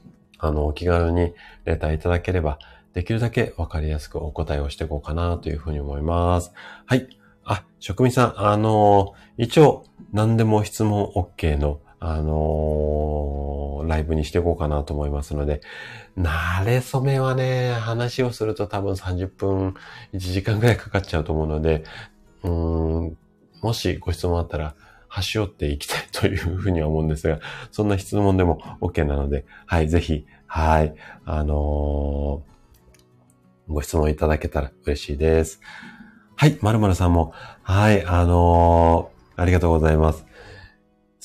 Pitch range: 80-100 Hz